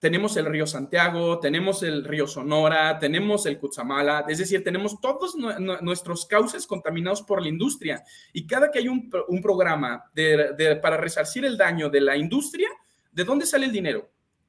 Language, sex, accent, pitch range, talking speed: Spanish, male, Mexican, 155-220 Hz, 165 wpm